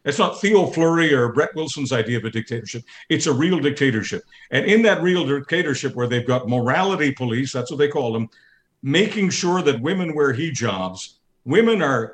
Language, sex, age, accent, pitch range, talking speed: English, male, 50-69, American, 125-155 Hz, 190 wpm